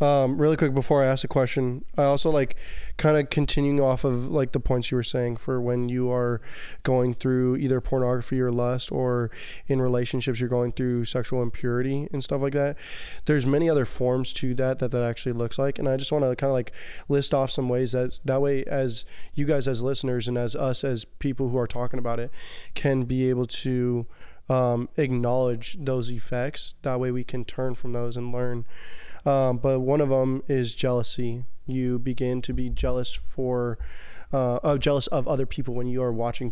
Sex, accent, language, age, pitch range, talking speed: male, American, English, 20-39, 120-135 Hz, 205 wpm